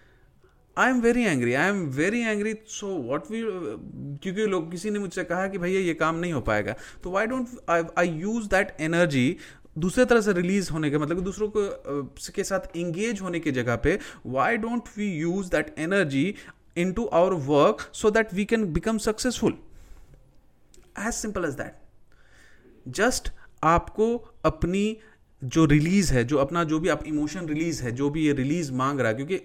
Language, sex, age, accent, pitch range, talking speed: Hindi, male, 30-49, native, 155-210 Hz, 185 wpm